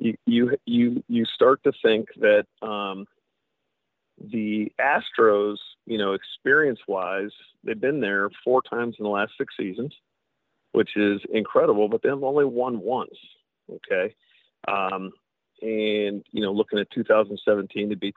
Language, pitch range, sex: English, 100-120 Hz, male